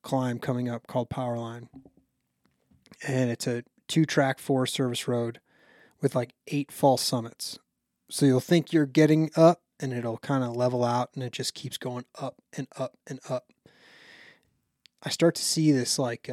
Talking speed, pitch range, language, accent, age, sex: 175 wpm, 120-135 Hz, English, American, 20-39, male